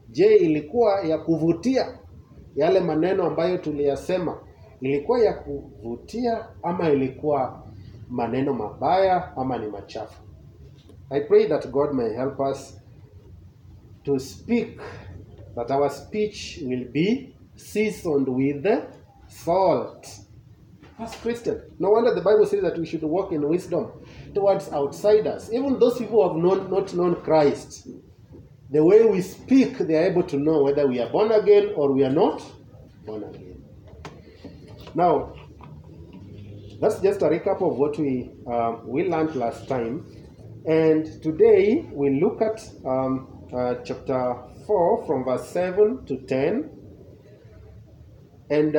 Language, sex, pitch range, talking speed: English, male, 125-190 Hz, 115 wpm